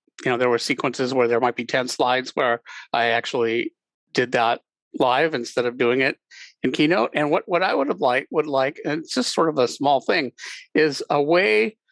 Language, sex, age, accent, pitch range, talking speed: English, male, 50-69, American, 130-165 Hz, 215 wpm